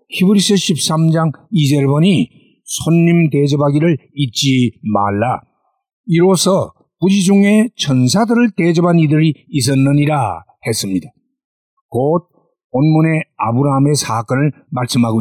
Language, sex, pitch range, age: Korean, male, 140-190 Hz, 50-69